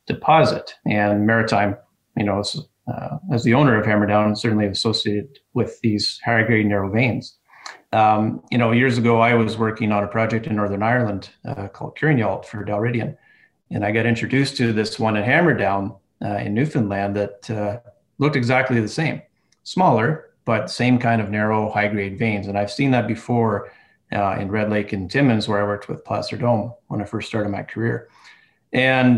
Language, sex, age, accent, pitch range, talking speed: English, male, 30-49, American, 105-125 Hz, 185 wpm